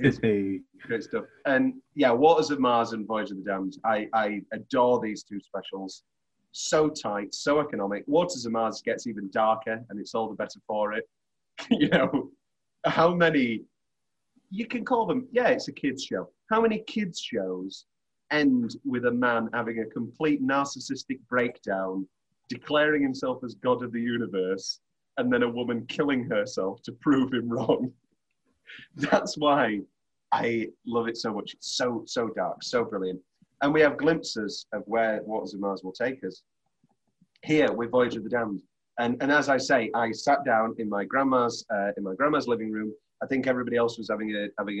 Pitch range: 105-135 Hz